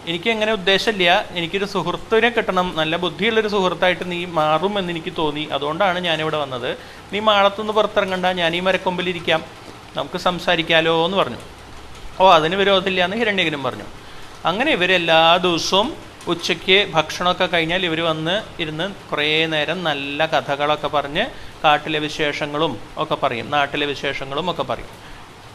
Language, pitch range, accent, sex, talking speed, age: Malayalam, 150-185 Hz, native, male, 125 wpm, 30-49